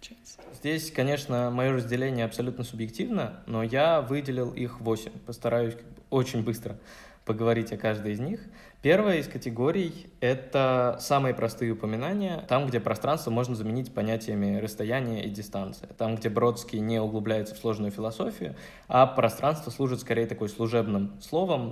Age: 20-39